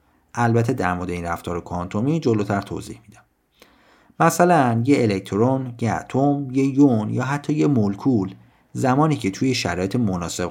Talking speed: 145 wpm